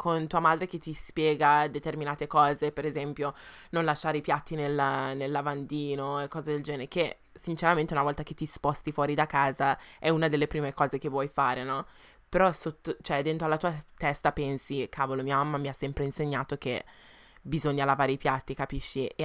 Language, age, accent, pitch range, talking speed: Italian, 20-39, native, 145-175 Hz, 190 wpm